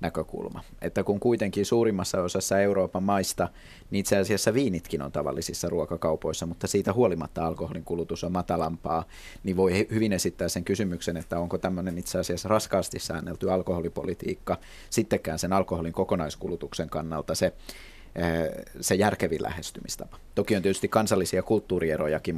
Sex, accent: male, native